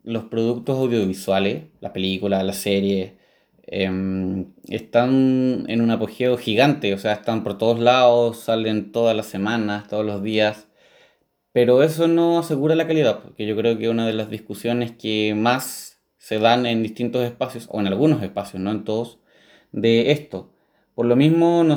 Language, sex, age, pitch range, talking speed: Spanish, male, 20-39, 110-145 Hz, 165 wpm